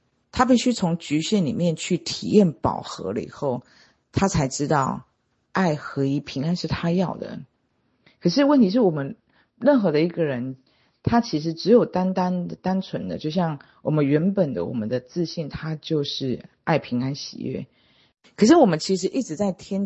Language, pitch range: Chinese, 145-195 Hz